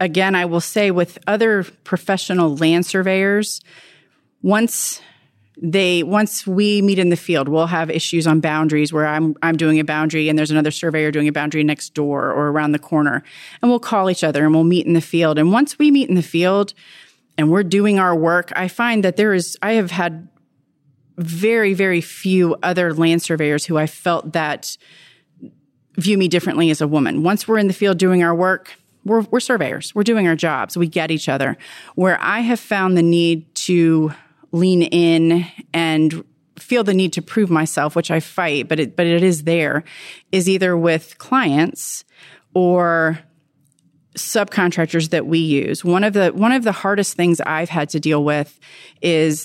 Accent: American